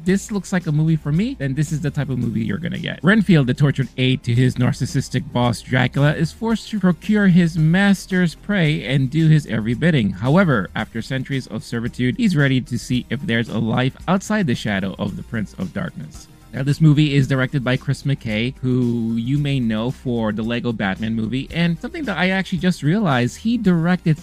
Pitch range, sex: 125-170 Hz, male